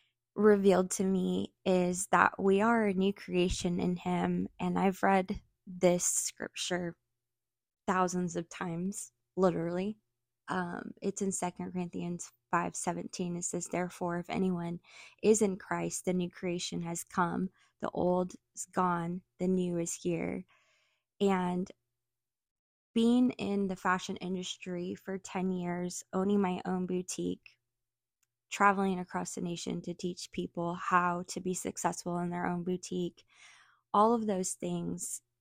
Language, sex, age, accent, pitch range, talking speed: English, female, 20-39, American, 170-185 Hz, 135 wpm